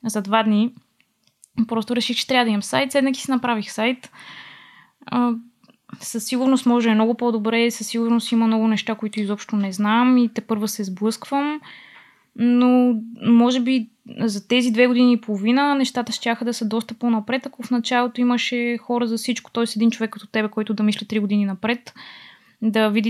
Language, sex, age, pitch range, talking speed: Bulgarian, female, 20-39, 215-245 Hz, 180 wpm